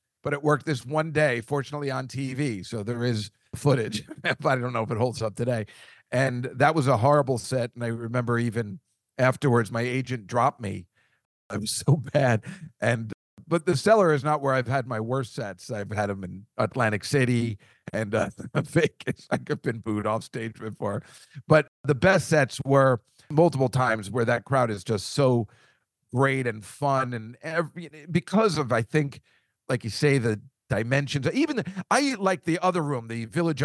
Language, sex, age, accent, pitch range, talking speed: English, male, 50-69, American, 115-145 Hz, 185 wpm